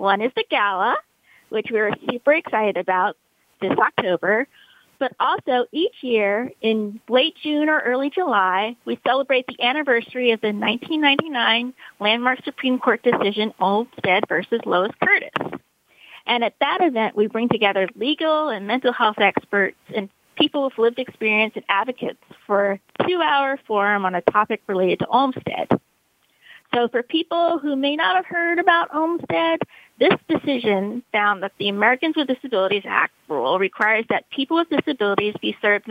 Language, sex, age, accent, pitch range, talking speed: English, female, 40-59, American, 210-295 Hz, 155 wpm